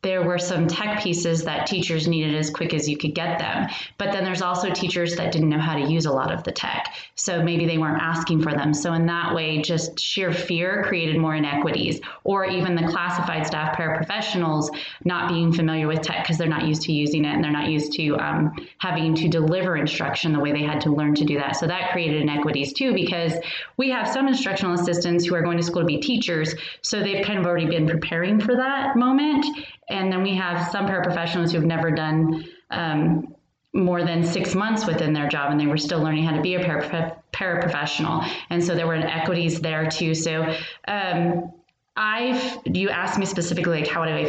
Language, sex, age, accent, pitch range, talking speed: English, female, 20-39, American, 155-180 Hz, 215 wpm